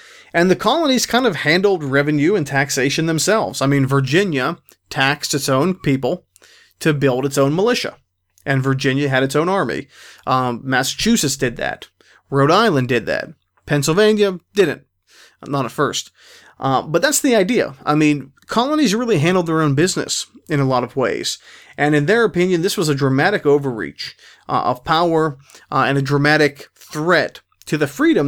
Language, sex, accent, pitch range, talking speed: English, male, American, 135-180 Hz, 170 wpm